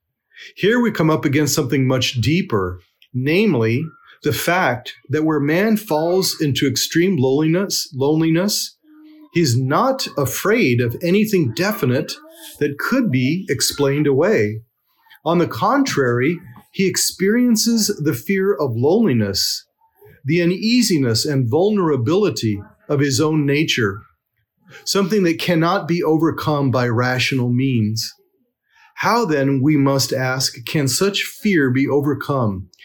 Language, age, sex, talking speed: English, 40-59, male, 120 wpm